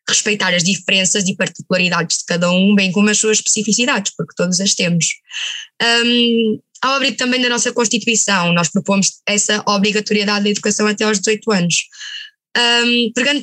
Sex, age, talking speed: female, 20-39, 160 wpm